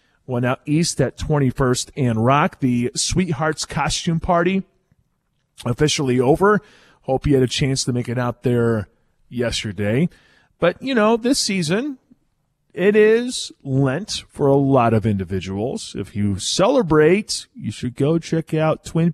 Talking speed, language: 145 wpm, English